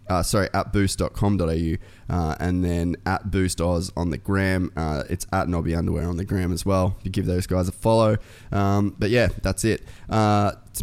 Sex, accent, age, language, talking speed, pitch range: male, Australian, 20-39, English, 195 wpm, 90-105 Hz